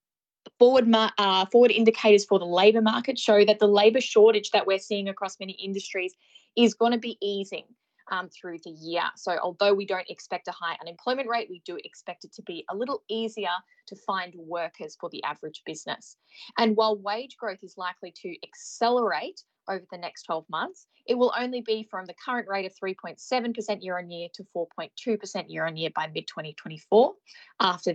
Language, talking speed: English, 175 wpm